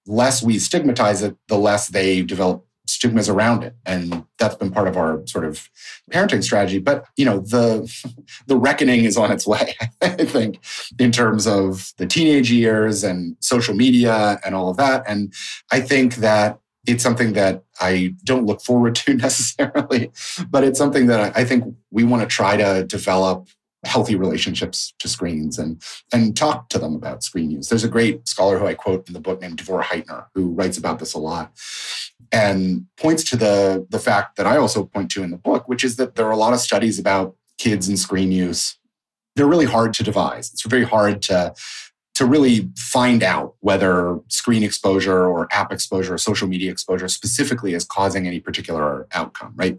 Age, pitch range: 30-49, 95-125 Hz